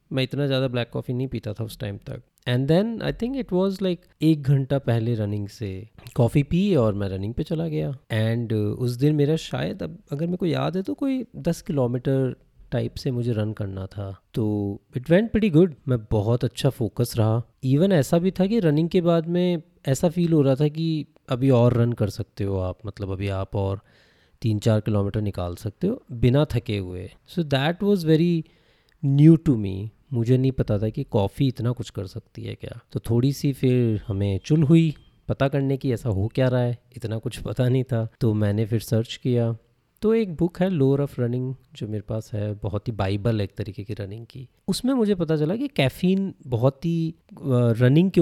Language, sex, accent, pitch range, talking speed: Hindi, male, native, 110-155 Hz, 215 wpm